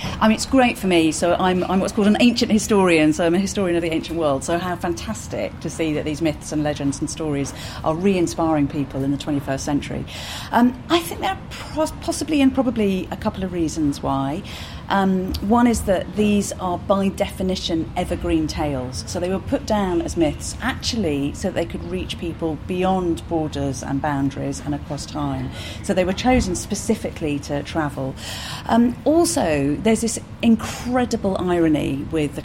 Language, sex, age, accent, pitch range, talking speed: English, female, 40-59, British, 150-205 Hz, 185 wpm